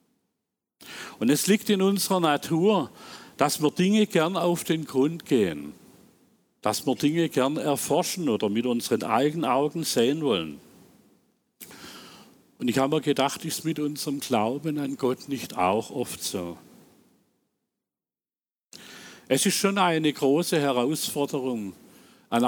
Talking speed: 130 wpm